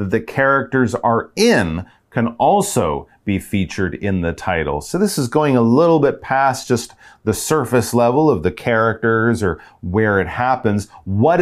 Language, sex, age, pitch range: Chinese, male, 40-59, 110-155 Hz